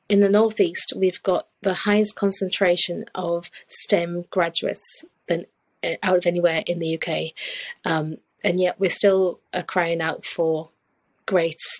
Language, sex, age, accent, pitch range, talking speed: English, female, 30-49, British, 170-190 Hz, 135 wpm